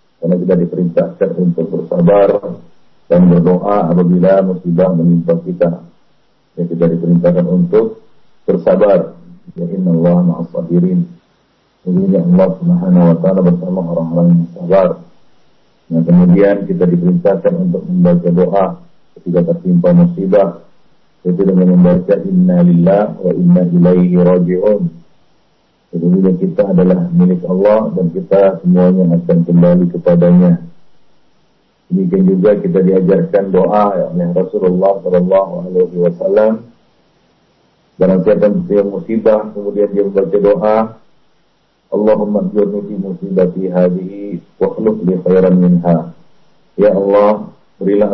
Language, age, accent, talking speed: English, 50-69, Indonesian, 100 wpm